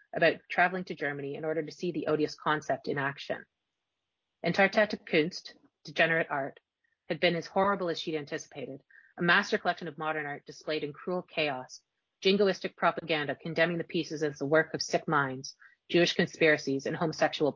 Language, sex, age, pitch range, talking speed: English, female, 30-49, 145-175 Hz, 165 wpm